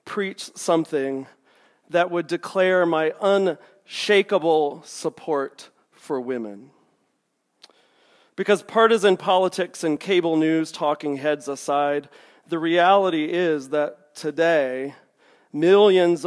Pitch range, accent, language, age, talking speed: 145-185 Hz, American, English, 40-59, 90 wpm